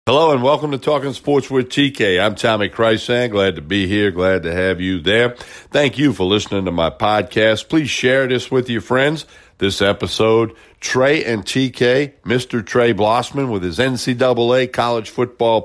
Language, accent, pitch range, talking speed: English, American, 110-130 Hz, 175 wpm